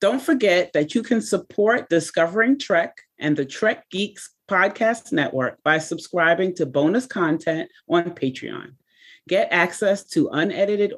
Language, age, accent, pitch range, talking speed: English, 30-49, American, 150-225 Hz, 135 wpm